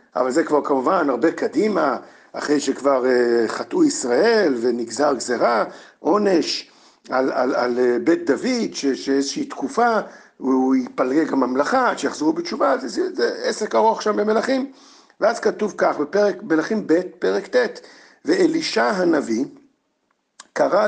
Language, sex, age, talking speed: Hebrew, male, 50-69, 130 wpm